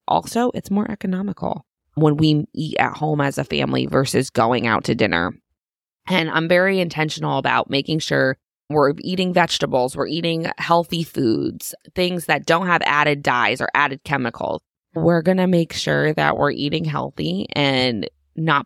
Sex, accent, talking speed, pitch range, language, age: female, American, 165 wpm, 140-180 Hz, English, 20-39